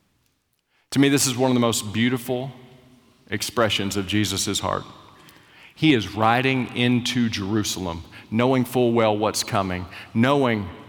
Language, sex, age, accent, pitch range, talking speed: English, male, 40-59, American, 110-145 Hz, 130 wpm